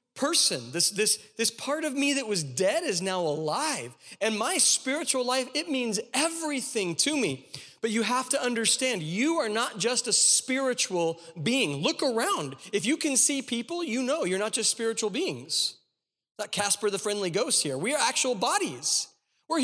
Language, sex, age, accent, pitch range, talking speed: English, male, 40-59, American, 205-275 Hz, 185 wpm